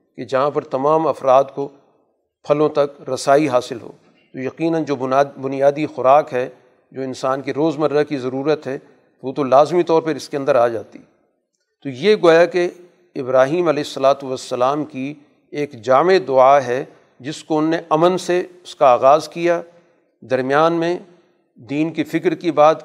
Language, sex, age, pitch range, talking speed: Urdu, male, 50-69, 135-160 Hz, 175 wpm